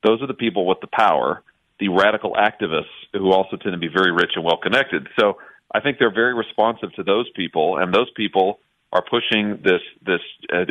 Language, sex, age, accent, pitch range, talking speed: English, male, 40-59, American, 100-140 Hz, 200 wpm